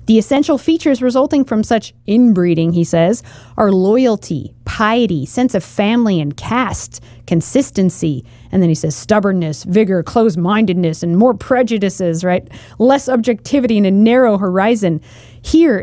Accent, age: American, 30-49